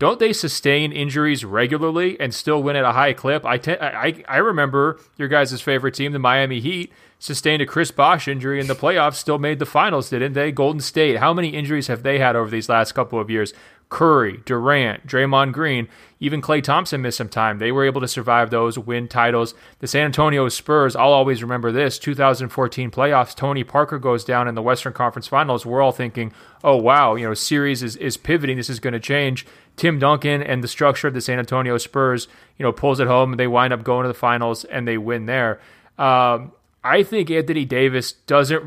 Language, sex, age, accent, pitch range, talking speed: English, male, 30-49, American, 120-145 Hz, 210 wpm